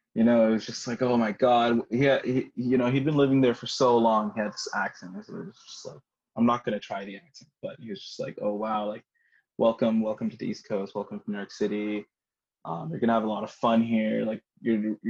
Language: Telugu